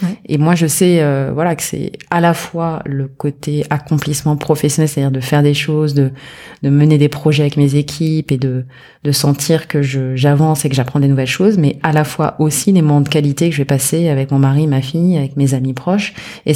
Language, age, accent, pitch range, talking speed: French, 30-49, French, 140-170 Hz, 230 wpm